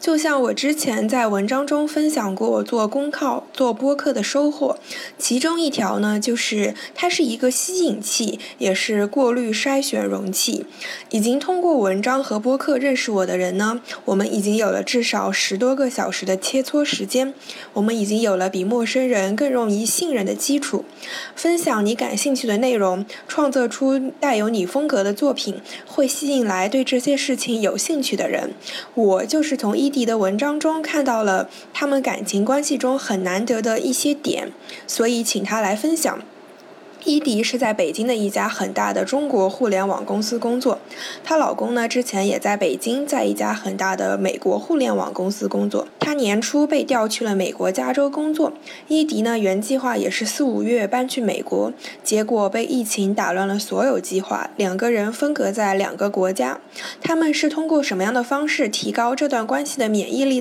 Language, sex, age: Chinese, female, 10-29